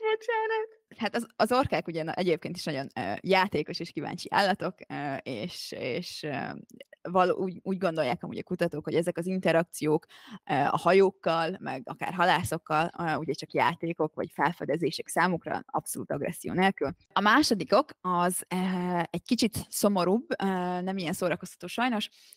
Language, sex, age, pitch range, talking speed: Hungarian, female, 20-39, 160-190 Hz, 135 wpm